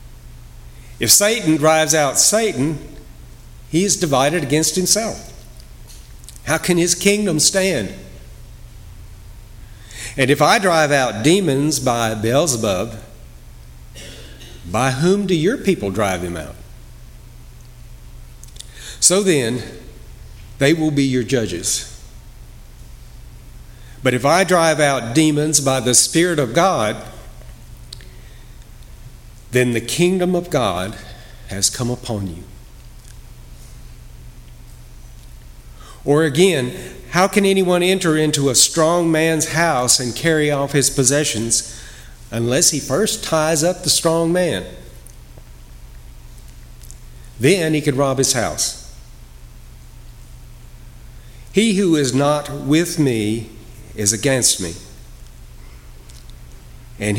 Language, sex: English, male